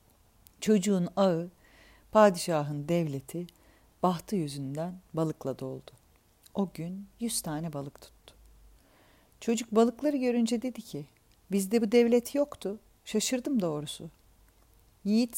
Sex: female